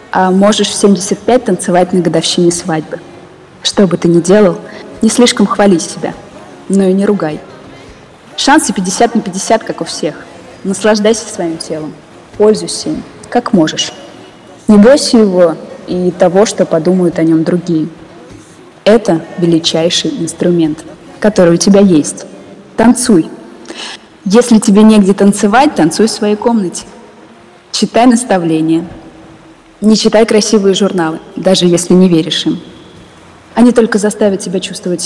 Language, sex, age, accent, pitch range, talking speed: Russian, female, 20-39, native, 165-210 Hz, 130 wpm